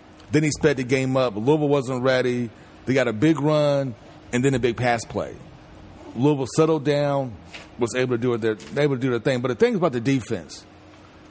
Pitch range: 120-150 Hz